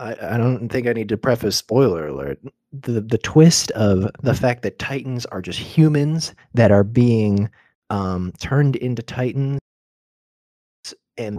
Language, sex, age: English, male, 20-39